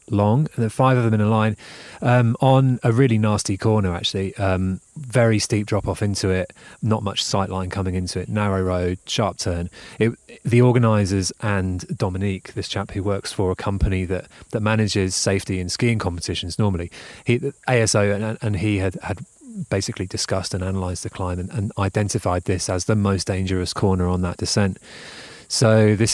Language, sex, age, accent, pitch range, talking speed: English, male, 30-49, British, 95-110 Hz, 185 wpm